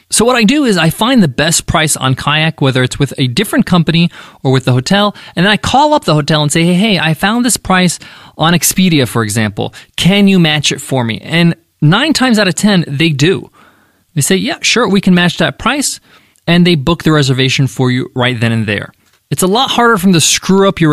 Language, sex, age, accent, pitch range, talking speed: English, male, 20-39, American, 140-195 Hz, 245 wpm